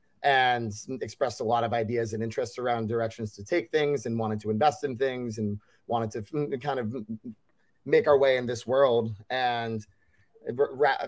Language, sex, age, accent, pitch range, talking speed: English, male, 30-49, American, 110-130 Hz, 180 wpm